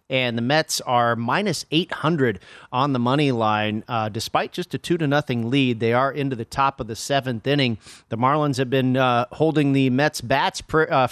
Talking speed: 205 wpm